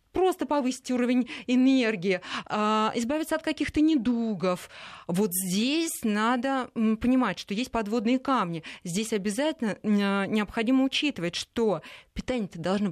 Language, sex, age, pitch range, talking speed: Russian, female, 20-39, 200-260 Hz, 105 wpm